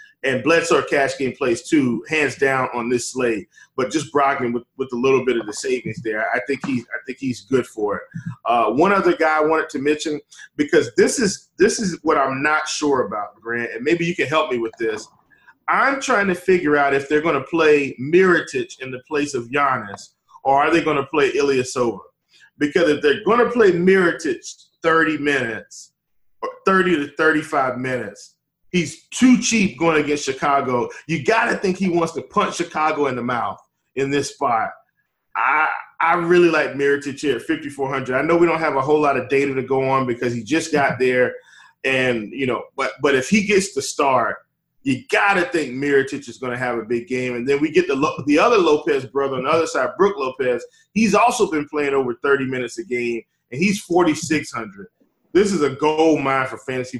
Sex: male